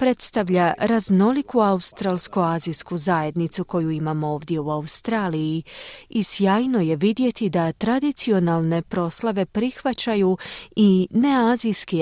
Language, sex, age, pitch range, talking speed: Croatian, female, 40-59, 180-235 Hz, 95 wpm